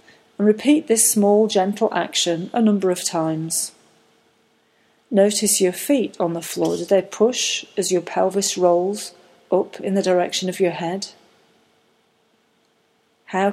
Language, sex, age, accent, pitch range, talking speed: English, female, 40-59, British, 180-220 Hz, 135 wpm